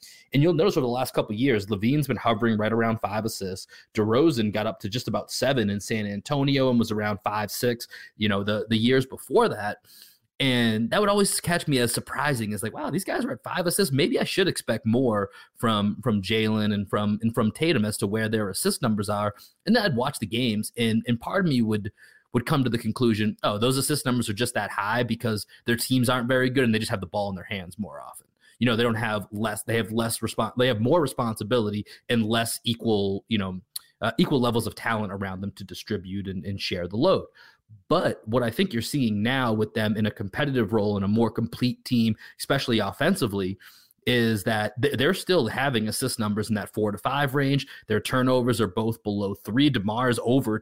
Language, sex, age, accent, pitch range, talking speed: English, male, 30-49, American, 105-125 Hz, 225 wpm